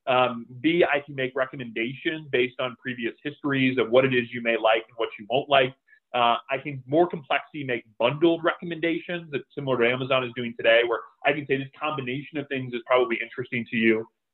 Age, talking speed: 30-49, 210 wpm